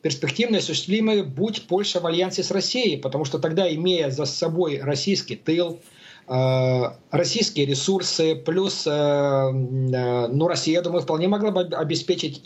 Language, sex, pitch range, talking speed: Russian, male, 140-180 Hz, 145 wpm